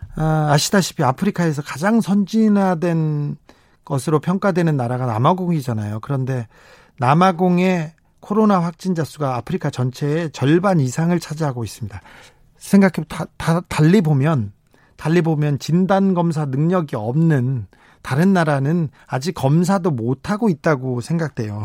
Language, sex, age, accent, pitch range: Korean, male, 40-59, native, 130-175 Hz